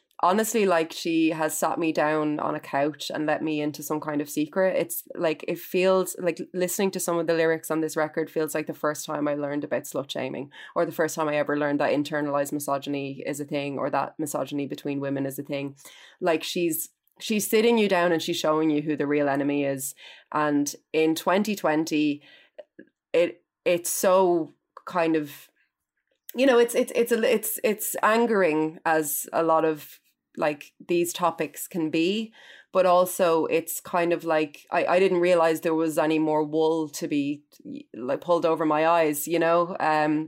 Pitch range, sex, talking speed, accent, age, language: 150-180 Hz, female, 190 wpm, Irish, 20-39, English